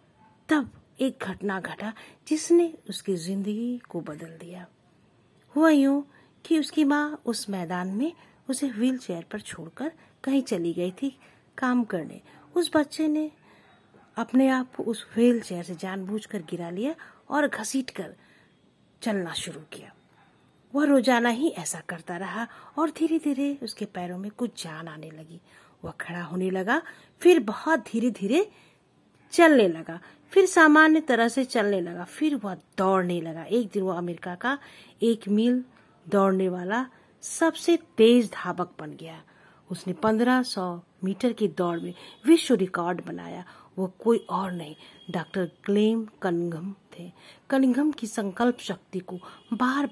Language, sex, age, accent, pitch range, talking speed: Hindi, female, 50-69, native, 180-270 Hz, 140 wpm